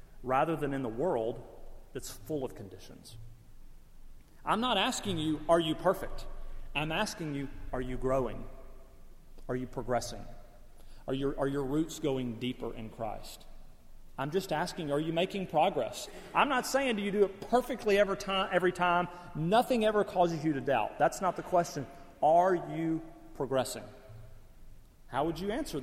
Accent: American